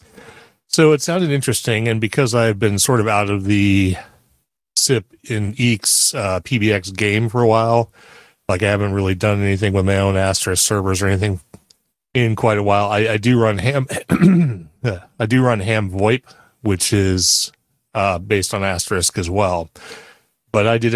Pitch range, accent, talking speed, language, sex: 100-120 Hz, American, 170 wpm, English, male